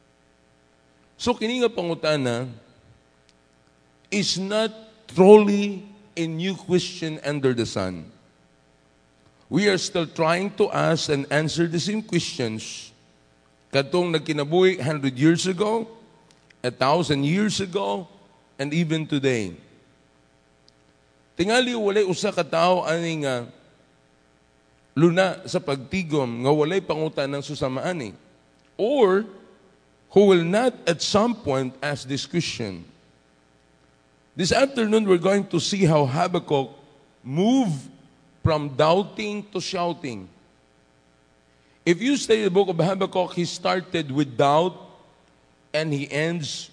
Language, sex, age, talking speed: English, male, 50-69, 115 wpm